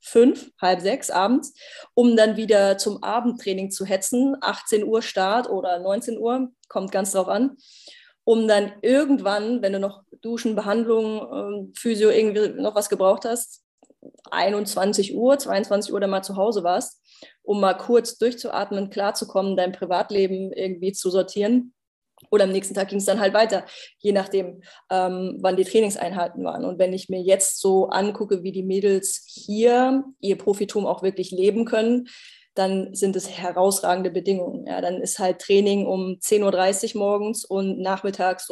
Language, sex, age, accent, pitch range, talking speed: German, female, 20-39, German, 190-225 Hz, 160 wpm